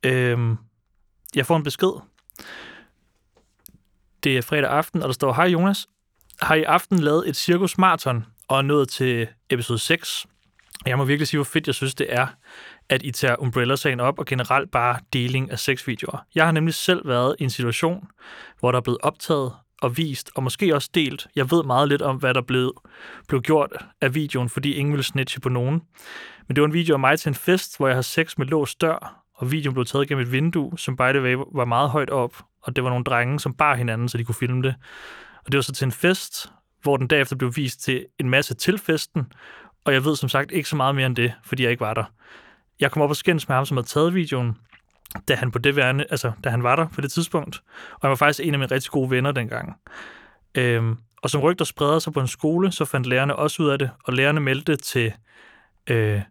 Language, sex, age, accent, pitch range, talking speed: Danish, male, 30-49, native, 125-150 Hz, 225 wpm